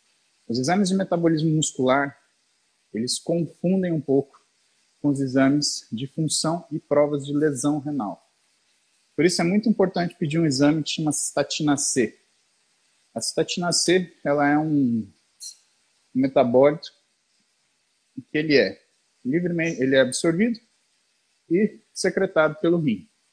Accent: Brazilian